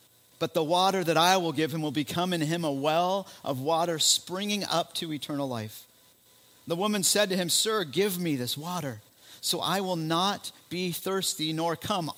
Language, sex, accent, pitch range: English, male, American, 135-180 Hz